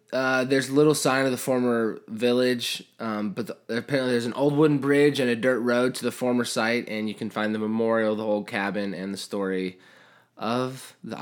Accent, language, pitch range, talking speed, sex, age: American, English, 110-140 Hz, 205 wpm, male, 20-39